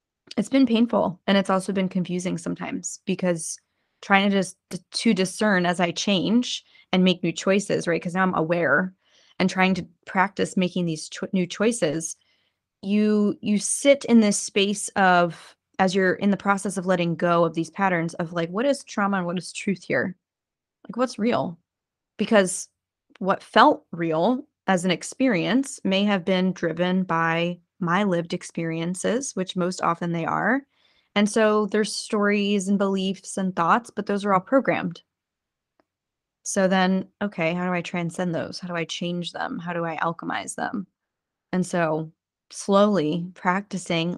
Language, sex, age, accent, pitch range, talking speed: English, female, 20-39, American, 170-205 Hz, 165 wpm